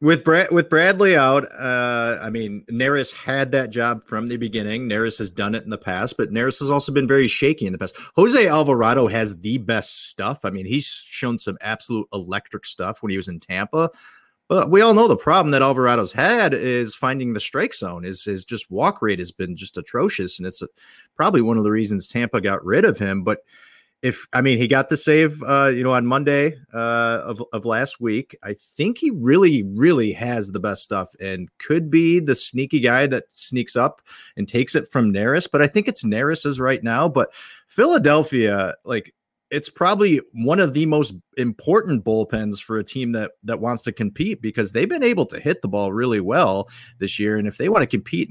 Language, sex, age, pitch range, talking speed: English, male, 30-49, 105-145 Hz, 215 wpm